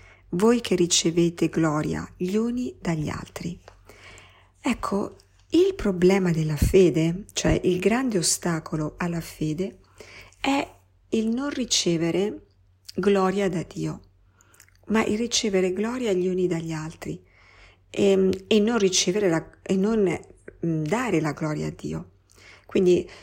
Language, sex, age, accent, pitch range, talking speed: Italian, female, 50-69, native, 155-200 Hz, 110 wpm